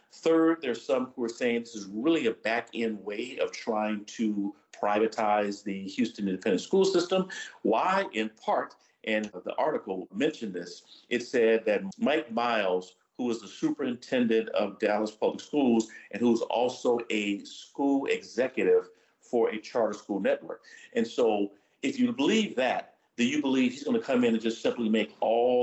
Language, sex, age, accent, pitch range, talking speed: English, male, 50-69, American, 100-140 Hz, 170 wpm